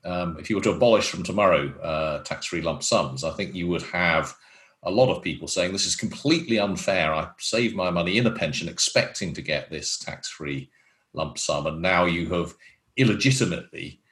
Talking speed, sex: 190 wpm, male